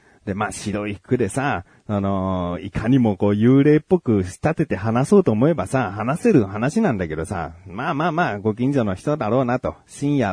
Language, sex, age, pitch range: Japanese, male, 40-59, 100-165 Hz